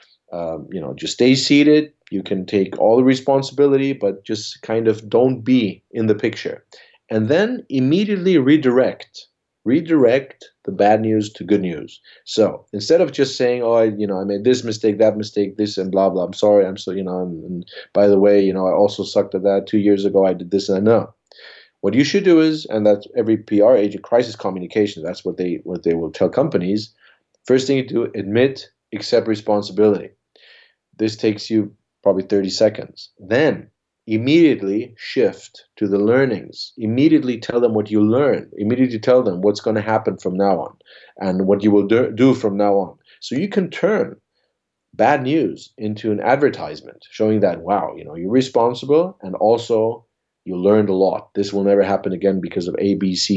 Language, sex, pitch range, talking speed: English, male, 100-120 Hz, 195 wpm